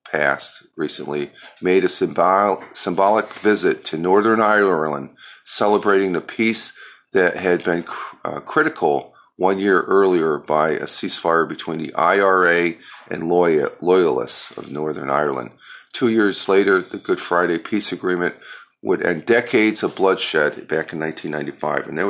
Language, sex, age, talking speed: English, male, 40-59, 135 wpm